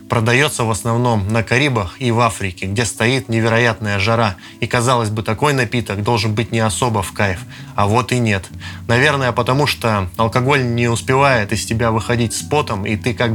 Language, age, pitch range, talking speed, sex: Russian, 20-39, 100-120 Hz, 185 wpm, male